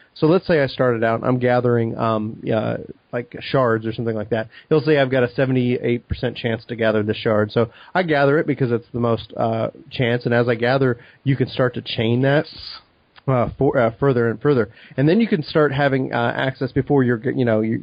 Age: 30-49